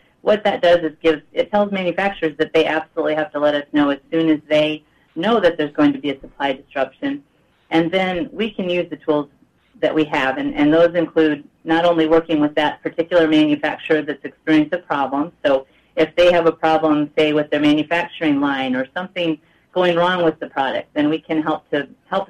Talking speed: 210 wpm